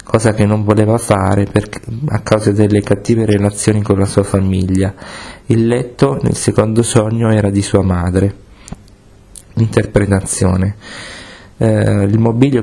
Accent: native